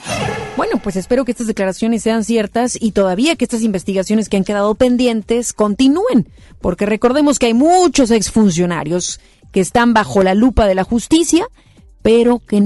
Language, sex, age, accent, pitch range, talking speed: Spanish, female, 30-49, Mexican, 200-260 Hz, 160 wpm